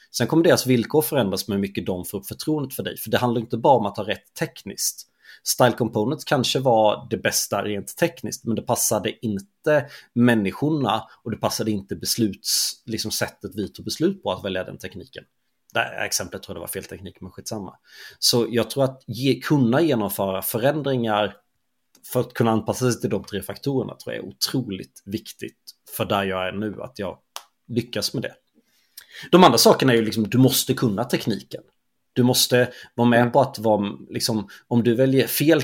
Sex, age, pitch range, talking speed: male, 30-49, 100-130 Hz, 195 wpm